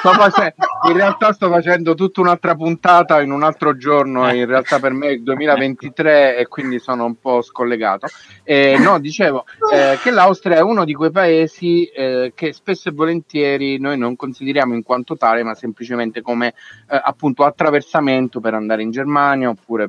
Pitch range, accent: 115-150 Hz, native